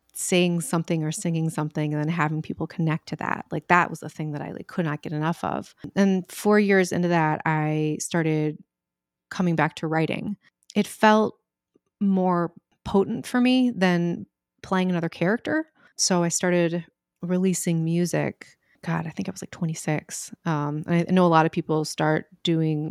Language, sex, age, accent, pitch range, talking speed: English, female, 30-49, American, 155-190 Hz, 180 wpm